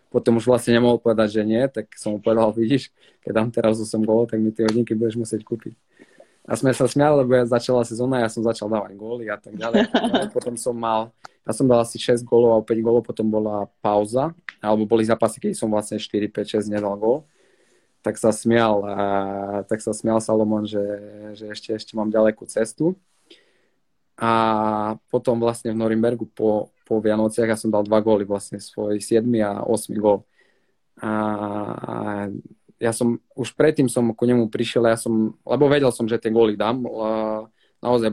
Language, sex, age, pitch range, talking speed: Slovak, male, 20-39, 105-120 Hz, 185 wpm